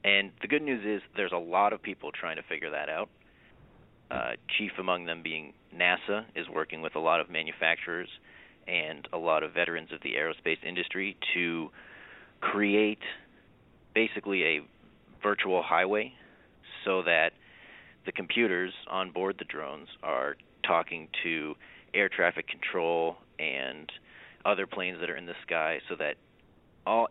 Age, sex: 30-49, male